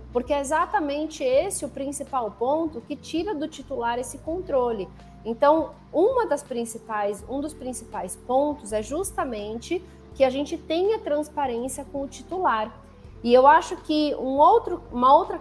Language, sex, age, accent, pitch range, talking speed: Portuguese, female, 30-49, Brazilian, 235-300 Hz, 150 wpm